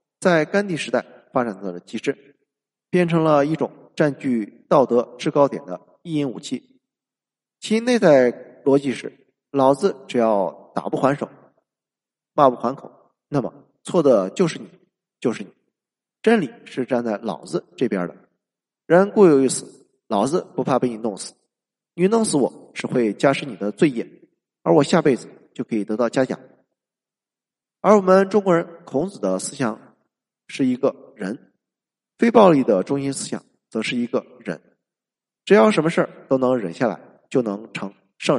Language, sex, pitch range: Chinese, male, 120-175 Hz